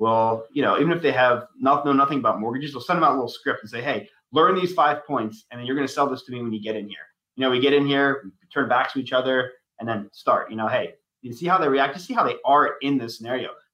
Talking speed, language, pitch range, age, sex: 315 wpm, English, 115-145 Hz, 30-49, male